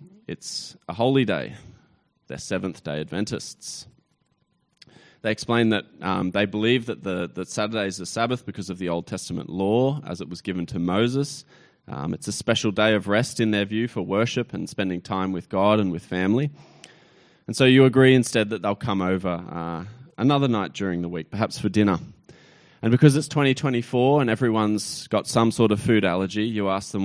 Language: English